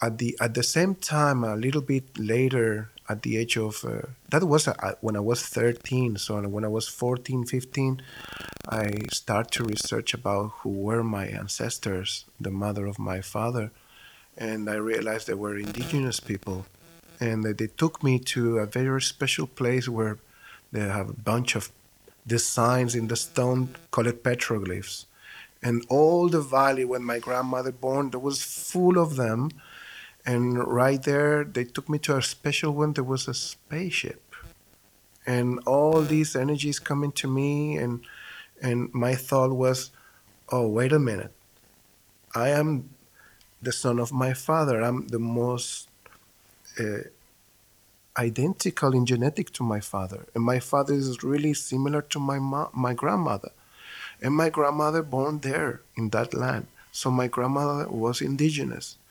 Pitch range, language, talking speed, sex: 110-140 Hz, English, 155 wpm, male